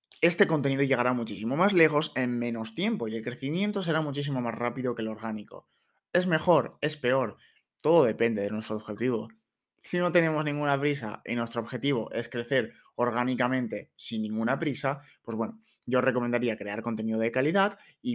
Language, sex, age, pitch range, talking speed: Spanish, male, 20-39, 115-145 Hz, 170 wpm